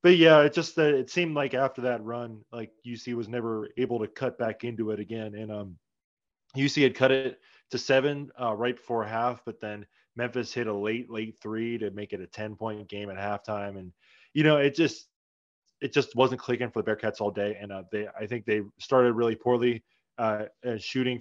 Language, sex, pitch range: English, male, 110-130 Hz